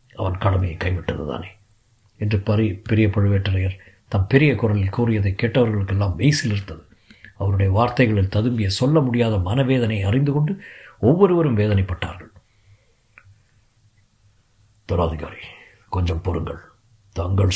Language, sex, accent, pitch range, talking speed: Tamil, male, native, 95-110 Hz, 95 wpm